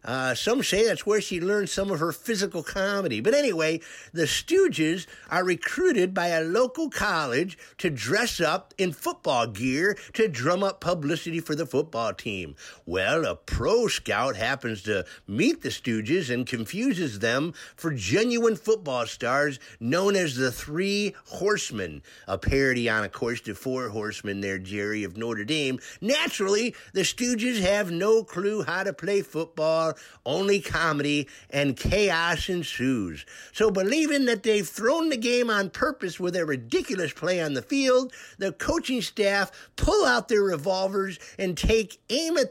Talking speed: 160 wpm